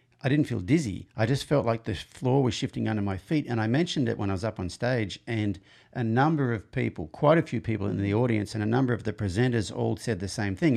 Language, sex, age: English, male, 50-69